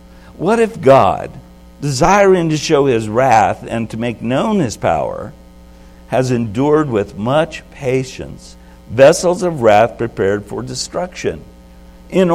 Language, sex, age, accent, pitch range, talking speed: English, male, 60-79, American, 95-145 Hz, 125 wpm